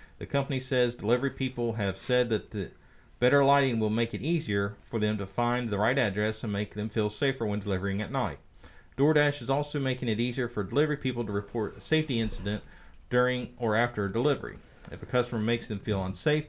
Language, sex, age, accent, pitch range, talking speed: English, male, 40-59, American, 100-130 Hz, 210 wpm